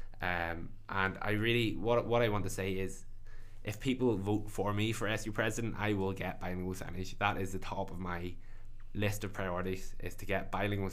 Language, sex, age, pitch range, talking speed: English, male, 20-39, 95-105 Hz, 205 wpm